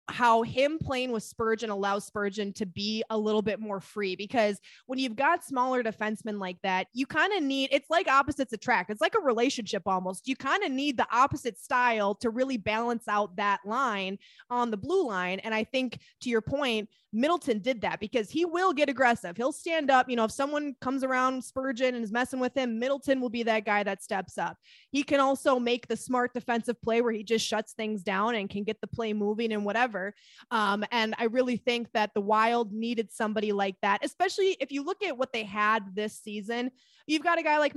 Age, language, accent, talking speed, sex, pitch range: 20-39, English, American, 220 wpm, female, 215-260 Hz